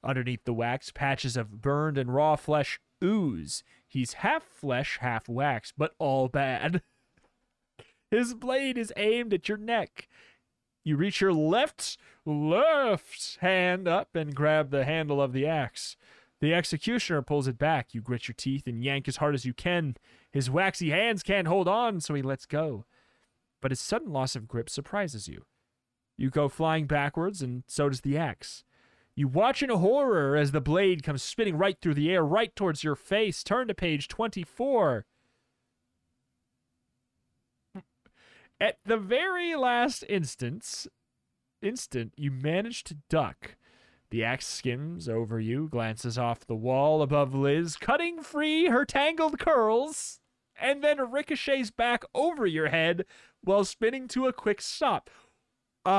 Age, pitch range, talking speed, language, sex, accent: 30-49, 135-210 Hz, 155 wpm, English, male, American